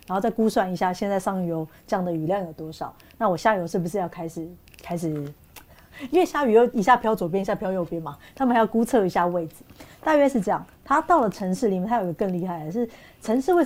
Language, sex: Chinese, female